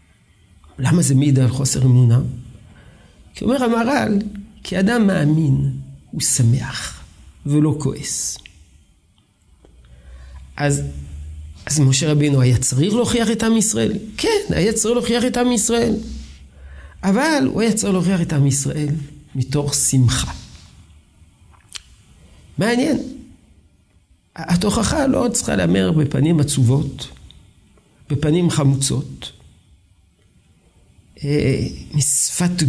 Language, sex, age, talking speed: Hebrew, male, 50-69, 95 wpm